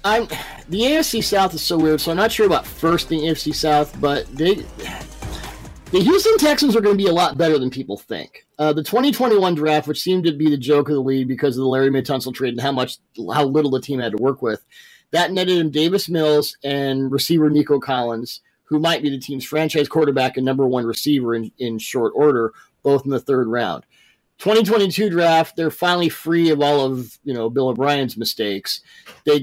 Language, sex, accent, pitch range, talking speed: English, male, American, 135-170 Hz, 210 wpm